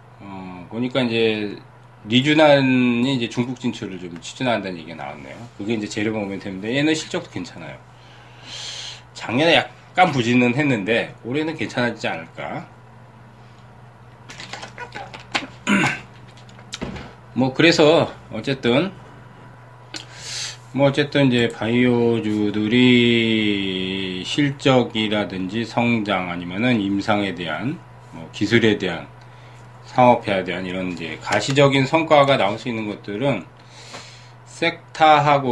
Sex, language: male, Korean